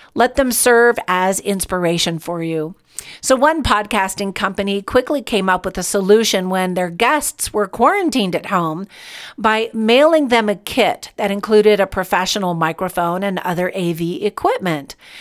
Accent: American